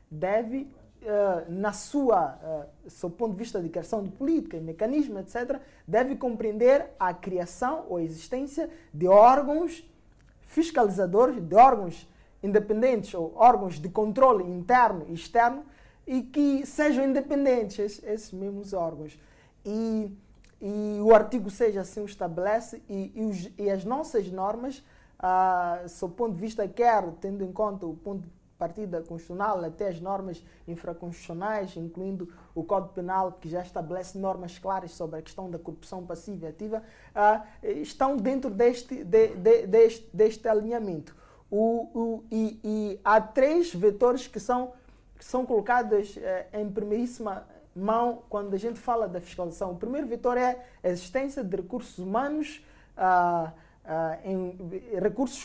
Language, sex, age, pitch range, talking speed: Portuguese, male, 20-39, 185-245 Hz, 150 wpm